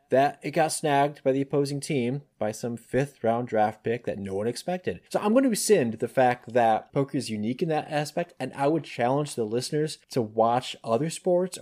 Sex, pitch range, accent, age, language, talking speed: male, 115-145 Hz, American, 30-49, English, 215 wpm